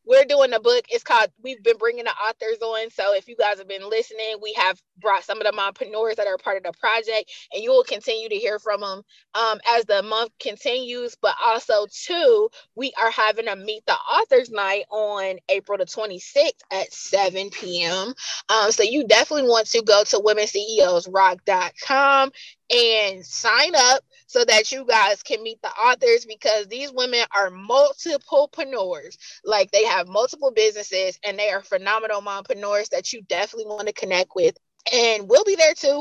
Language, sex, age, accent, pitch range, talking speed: English, female, 20-39, American, 205-295 Hz, 180 wpm